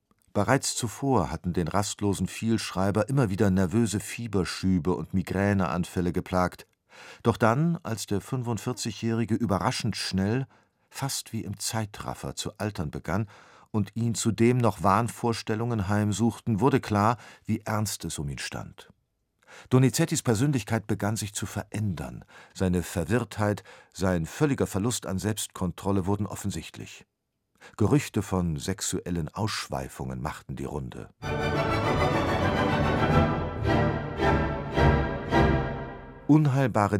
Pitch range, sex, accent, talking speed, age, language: 90-115 Hz, male, German, 105 wpm, 50-69, German